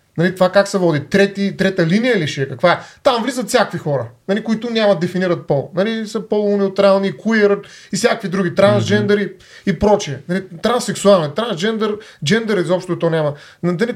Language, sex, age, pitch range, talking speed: Bulgarian, male, 30-49, 150-200 Hz, 175 wpm